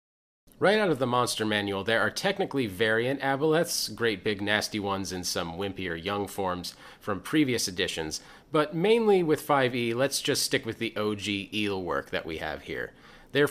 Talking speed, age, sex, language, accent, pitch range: 180 wpm, 30-49, male, English, American, 100-135 Hz